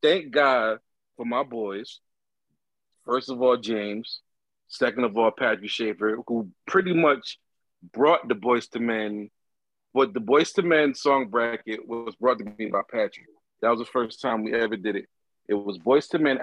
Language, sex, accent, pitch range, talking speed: English, male, American, 110-160 Hz, 180 wpm